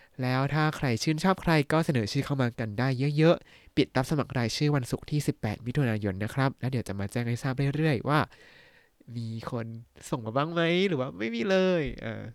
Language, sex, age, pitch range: Thai, male, 20-39, 115-155 Hz